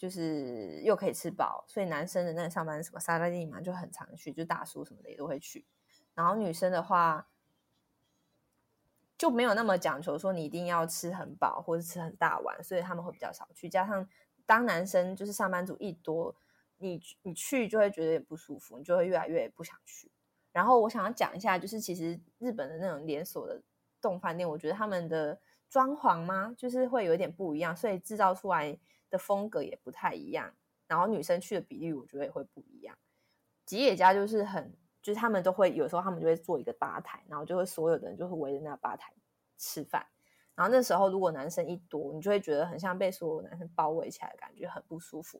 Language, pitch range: Chinese, 165-200 Hz